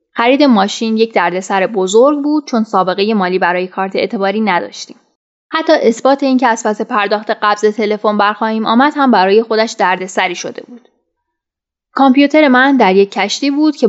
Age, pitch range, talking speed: 10-29, 195-250 Hz, 150 wpm